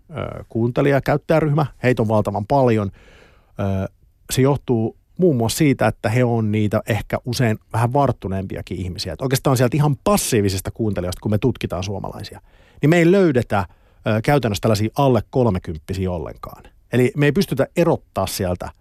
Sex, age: male, 50-69